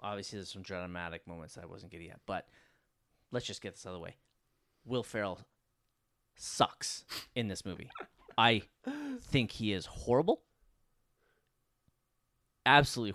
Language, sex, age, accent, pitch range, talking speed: English, male, 30-49, American, 100-125 Hz, 140 wpm